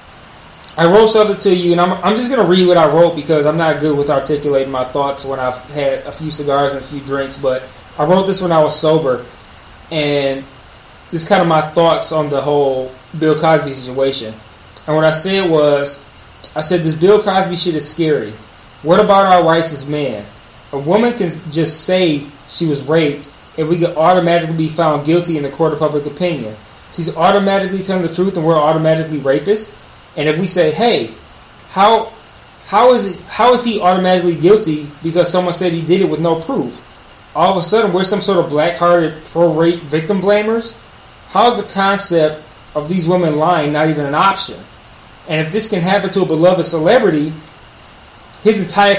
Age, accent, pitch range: 20-39, American, 150-185 Hz